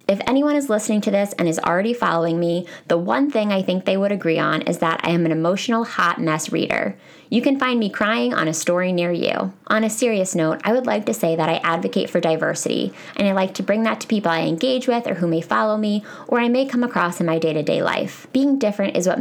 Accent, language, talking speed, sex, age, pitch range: American, English, 255 wpm, female, 20-39, 165-220 Hz